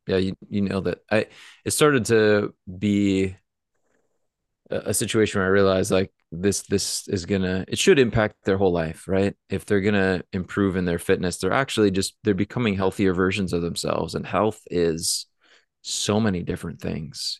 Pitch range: 90-100 Hz